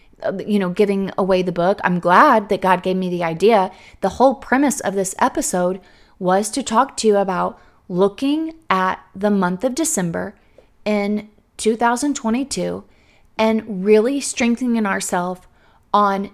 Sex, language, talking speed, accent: female, English, 145 wpm, American